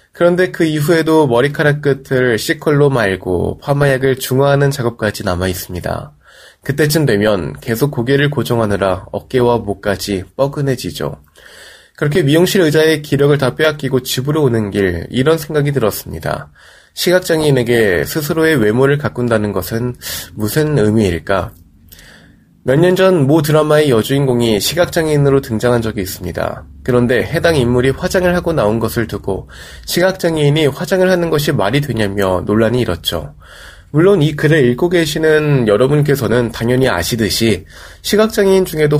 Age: 20-39